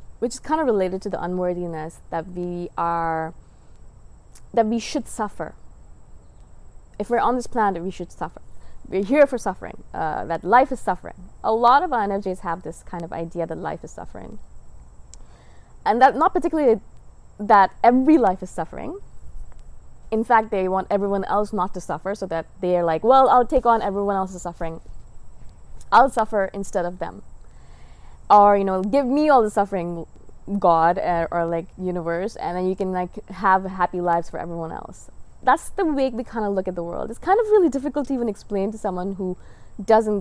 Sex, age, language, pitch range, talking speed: female, 20-39, English, 170-220 Hz, 190 wpm